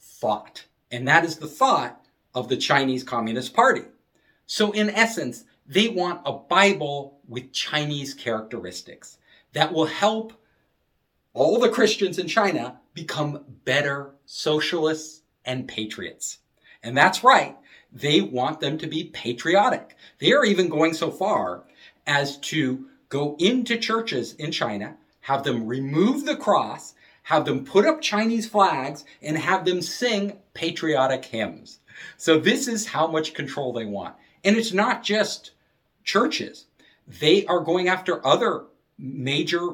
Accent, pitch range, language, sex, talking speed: American, 135-195 Hz, English, male, 140 wpm